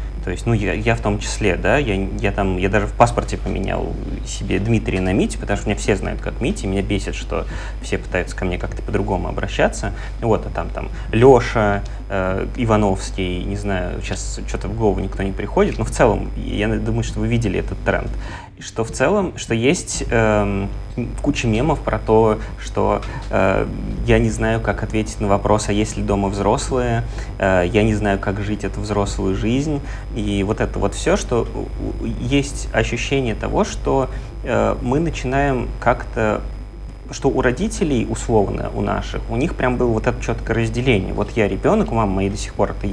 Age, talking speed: 20-39, 190 wpm